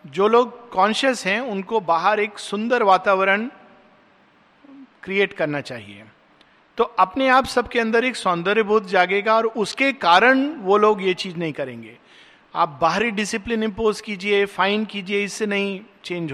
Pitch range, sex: 160-210 Hz, male